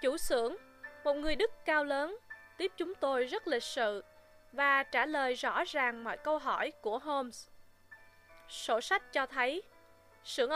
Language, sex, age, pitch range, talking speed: Vietnamese, female, 20-39, 220-295 Hz, 160 wpm